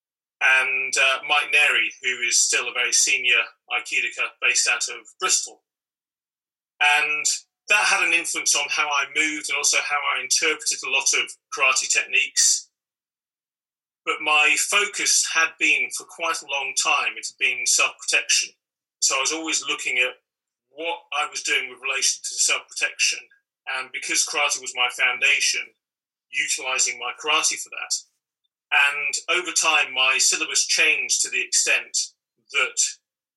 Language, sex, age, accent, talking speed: English, male, 30-49, British, 150 wpm